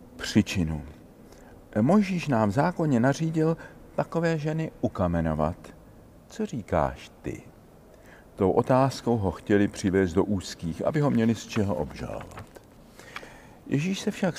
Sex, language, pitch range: male, Czech, 100-130 Hz